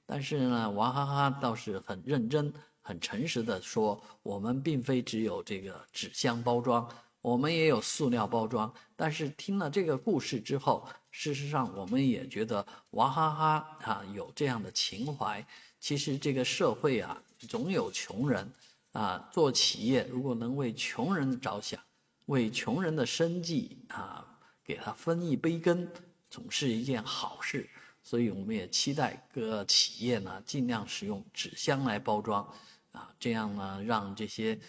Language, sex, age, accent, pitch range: Chinese, male, 50-69, native, 115-160 Hz